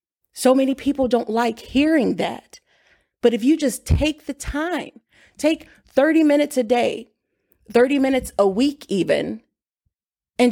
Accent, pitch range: American, 225-265 Hz